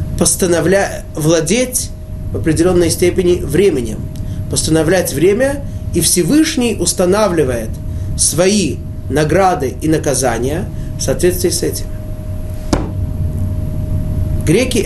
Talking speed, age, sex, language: 75 wpm, 20-39, male, Russian